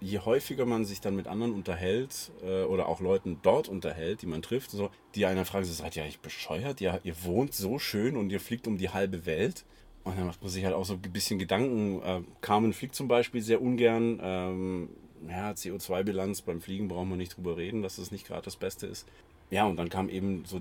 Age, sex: 30-49, male